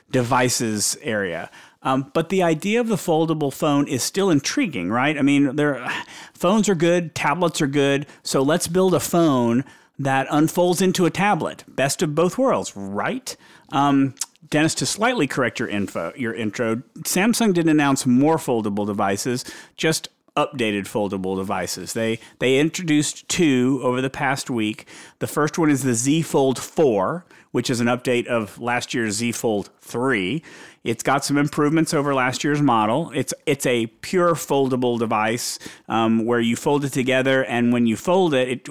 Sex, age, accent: male, 40-59, American